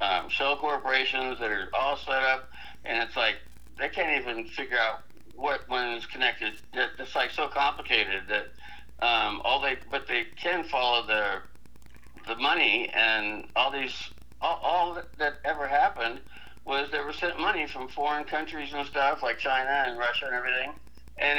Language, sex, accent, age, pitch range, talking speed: English, male, American, 60-79, 110-155 Hz, 170 wpm